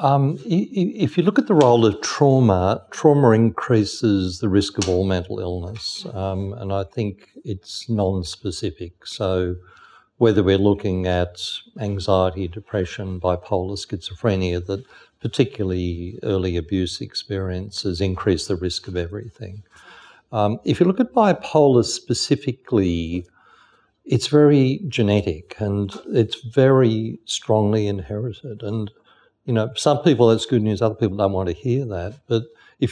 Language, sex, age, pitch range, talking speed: English, male, 60-79, 95-120 Hz, 135 wpm